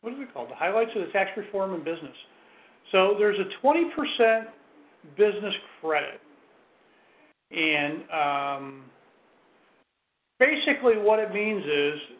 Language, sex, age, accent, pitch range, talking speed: English, male, 40-59, American, 180-230 Hz, 125 wpm